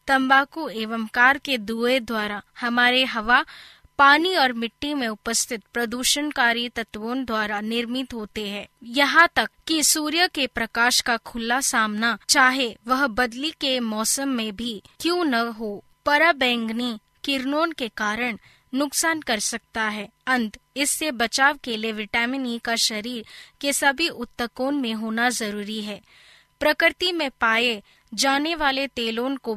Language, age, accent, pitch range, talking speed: Hindi, 20-39, native, 225-275 Hz, 140 wpm